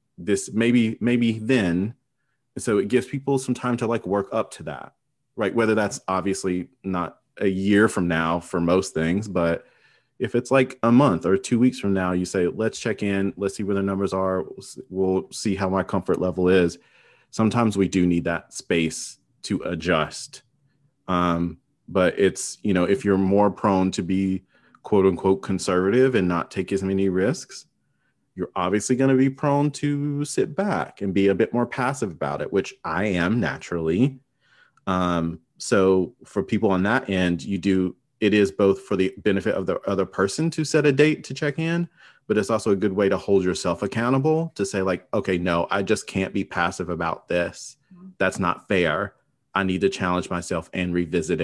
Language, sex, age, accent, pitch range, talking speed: English, male, 30-49, American, 90-125 Hz, 190 wpm